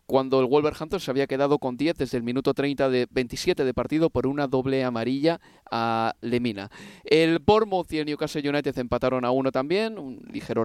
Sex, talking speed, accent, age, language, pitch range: male, 190 wpm, Spanish, 30-49, Spanish, 125-165 Hz